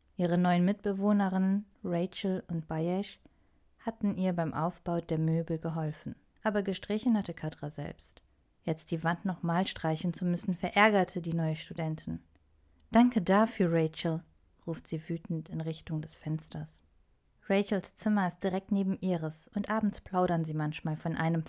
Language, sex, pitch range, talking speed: German, female, 160-200 Hz, 145 wpm